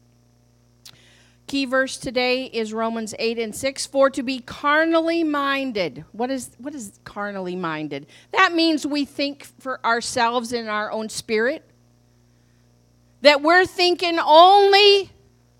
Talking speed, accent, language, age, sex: 125 wpm, American, English, 40-59, female